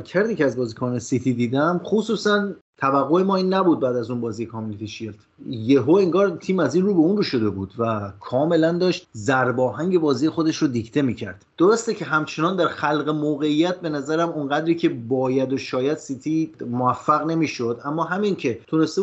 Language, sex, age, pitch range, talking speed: Persian, male, 30-49, 125-170 Hz, 180 wpm